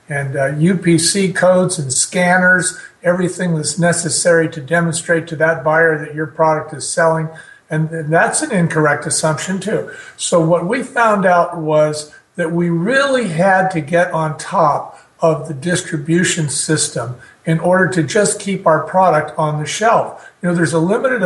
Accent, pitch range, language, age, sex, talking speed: American, 160-185 Hz, English, 50-69, male, 165 wpm